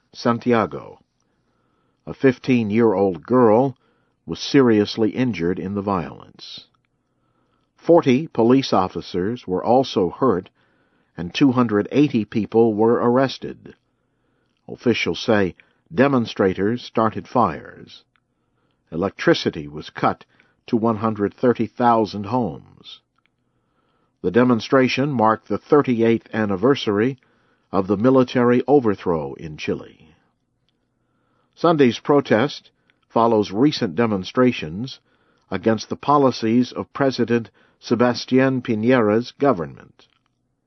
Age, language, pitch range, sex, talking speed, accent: 60-79, English, 100-125 Hz, male, 85 wpm, American